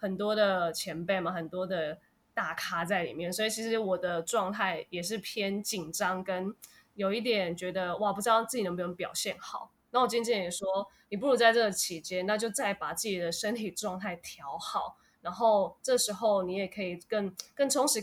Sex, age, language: female, 20-39, Chinese